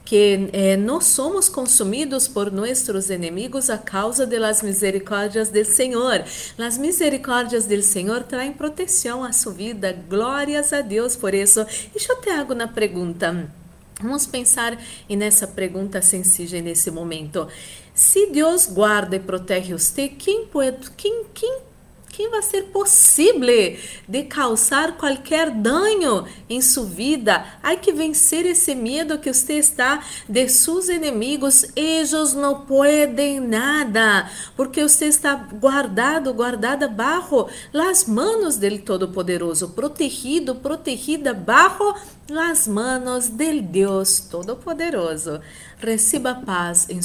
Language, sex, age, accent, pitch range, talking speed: Spanish, female, 40-59, Brazilian, 200-295 Hz, 130 wpm